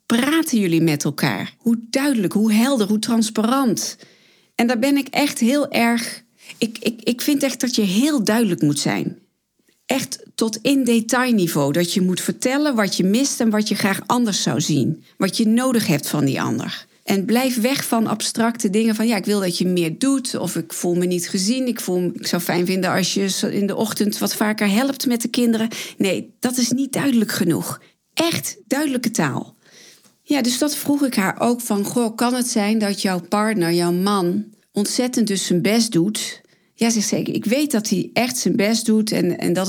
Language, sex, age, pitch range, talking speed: Dutch, female, 40-59, 200-245 Hz, 205 wpm